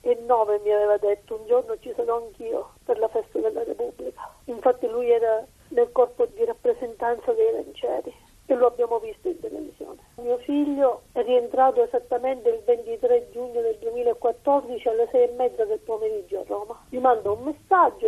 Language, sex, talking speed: Italian, female, 175 wpm